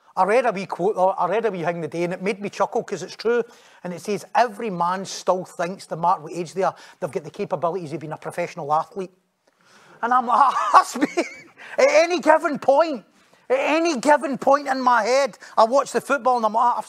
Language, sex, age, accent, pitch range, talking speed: English, male, 30-49, British, 195-270 Hz, 240 wpm